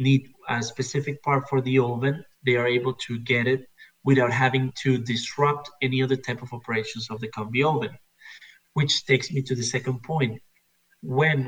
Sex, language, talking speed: male, English, 180 wpm